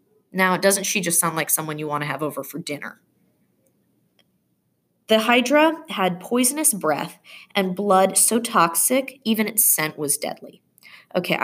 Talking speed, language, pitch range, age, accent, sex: 150 wpm, English, 170-225 Hz, 20-39, American, female